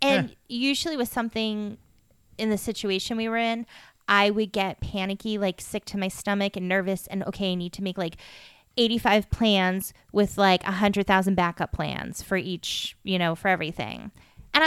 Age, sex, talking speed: 20-39, female, 170 wpm